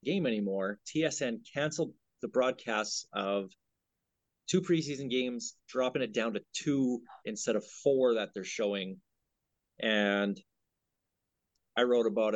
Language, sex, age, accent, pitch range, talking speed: English, male, 30-49, American, 105-135 Hz, 120 wpm